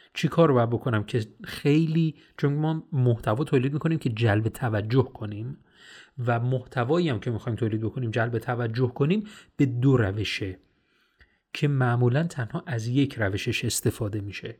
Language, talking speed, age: Persian, 145 wpm, 30-49